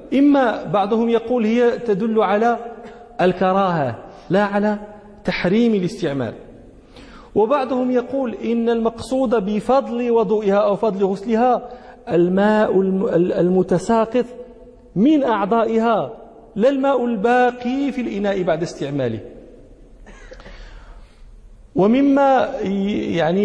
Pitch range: 185-235 Hz